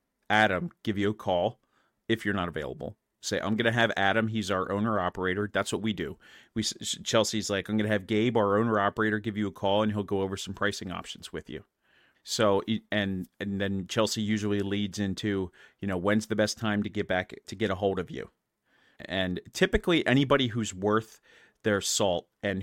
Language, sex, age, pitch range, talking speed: English, male, 30-49, 95-110 Hz, 205 wpm